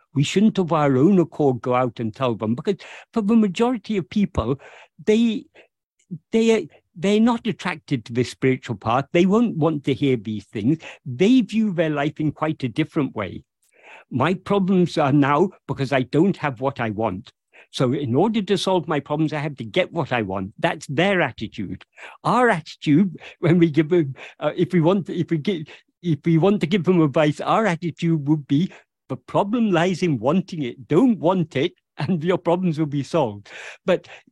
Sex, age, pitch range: male, 60-79, 140-195 Hz